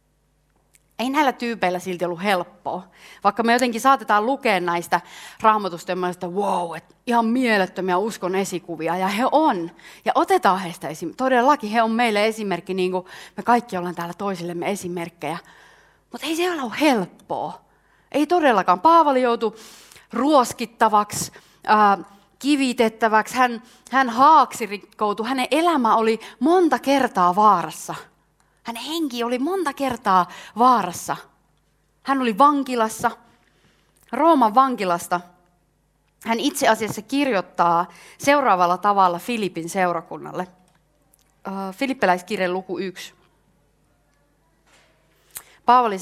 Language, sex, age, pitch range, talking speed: Finnish, female, 30-49, 175-250 Hz, 110 wpm